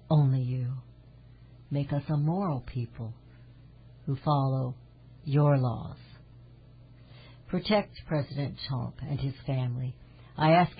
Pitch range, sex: 125-160 Hz, female